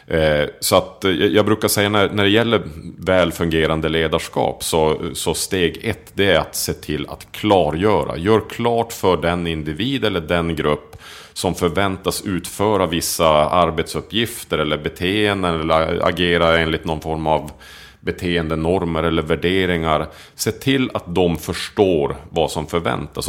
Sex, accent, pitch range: male, Norwegian, 80-95 Hz